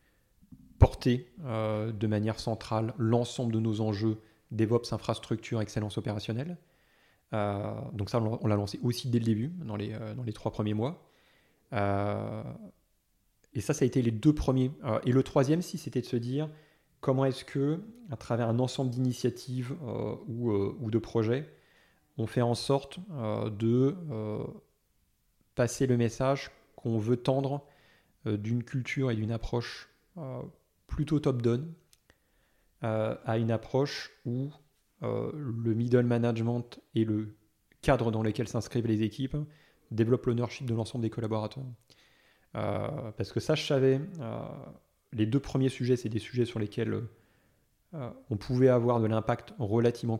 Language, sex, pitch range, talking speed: French, male, 110-130 Hz, 140 wpm